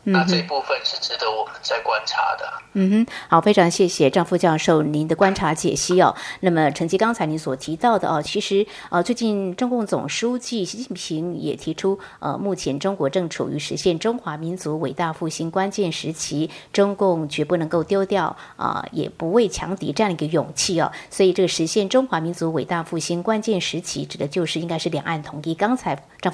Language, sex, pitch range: Chinese, female, 165-210 Hz